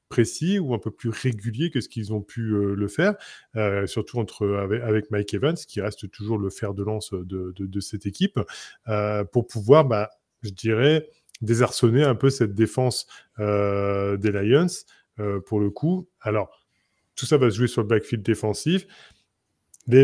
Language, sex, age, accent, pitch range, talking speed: French, male, 20-39, French, 105-125 Hz, 185 wpm